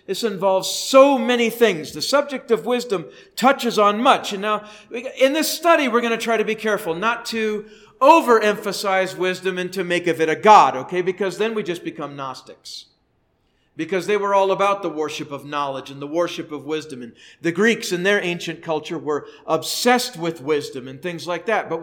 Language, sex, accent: English, male, American